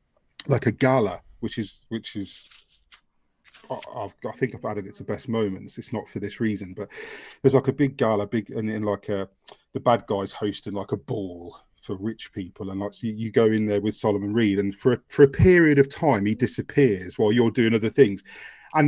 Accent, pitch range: British, 105-155 Hz